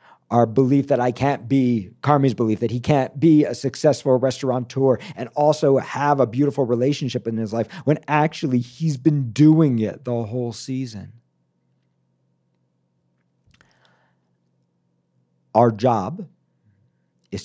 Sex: male